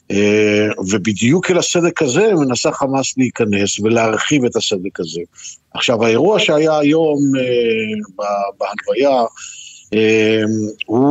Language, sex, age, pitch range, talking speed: Hebrew, male, 50-69, 110-135 Hz, 110 wpm